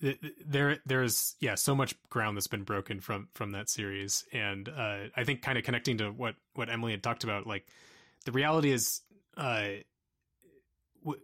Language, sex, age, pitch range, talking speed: English, male, 20-39, 100-125 Hz, 175 wpm